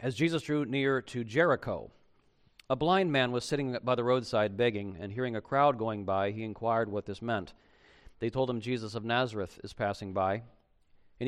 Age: 40-59